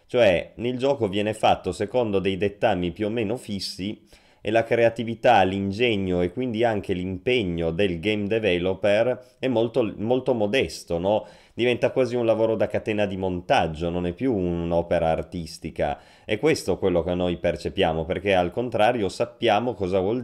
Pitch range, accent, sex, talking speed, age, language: 85-110 Hz, native, male, 155 wpm, 30-49, Italian